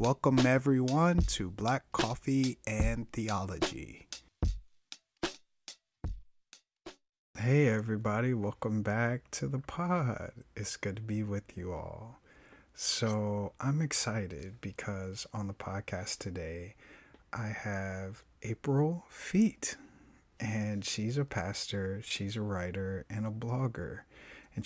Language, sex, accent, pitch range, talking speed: English, male, American, 100-115 Hz, 105 wpm